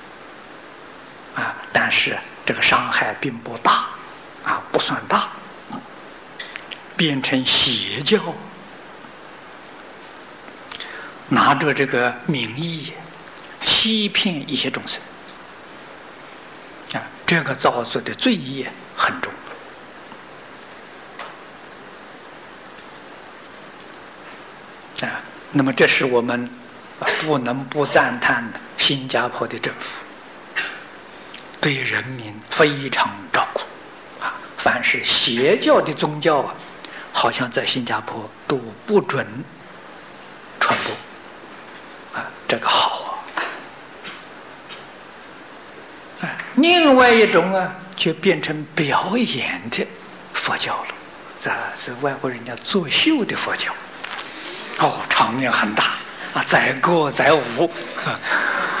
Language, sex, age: Czech, male, 60-79